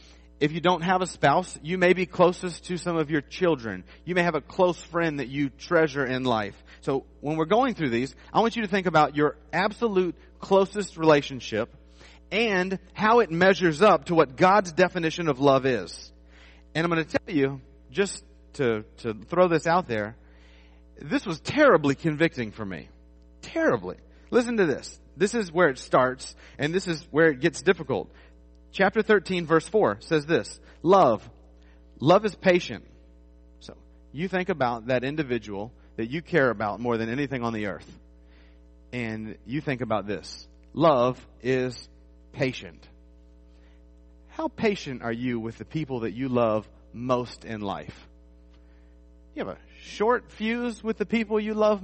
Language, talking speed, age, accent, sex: English, 170 wpm, 40-59, American, male